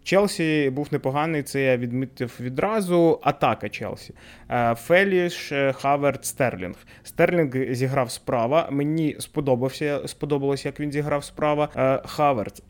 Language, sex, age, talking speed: Ukrainian, male, 20-39, 105 wpm